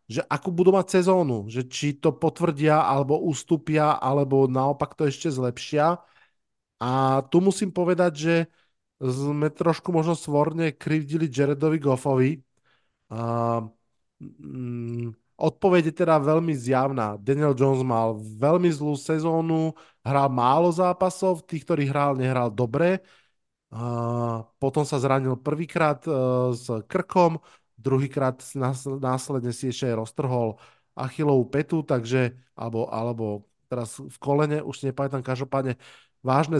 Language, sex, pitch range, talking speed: Slovak, male, 125-160 Hz, 120 wpm